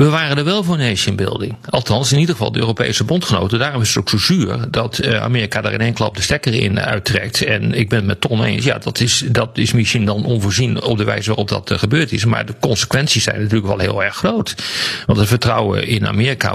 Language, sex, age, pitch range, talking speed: Dutch, male, 40-59, 105-130 Hz, 235 wpm